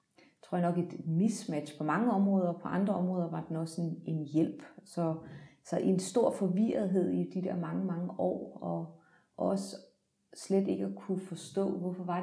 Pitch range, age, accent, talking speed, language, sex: 175-195 Hz, 30-49, native, 185 wpm, Danish, female